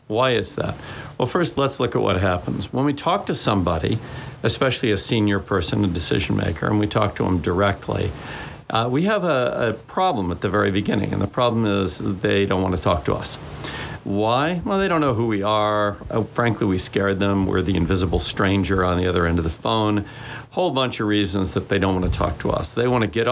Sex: male